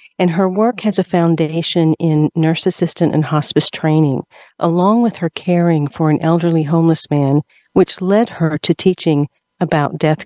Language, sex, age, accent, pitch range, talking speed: English, female, 50-69, American, 155-185 Hz, 165 wpm